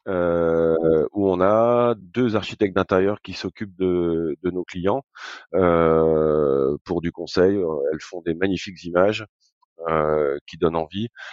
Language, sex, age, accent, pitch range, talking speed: French, male, 40-59, French, 80-95 Hz, 140 wpm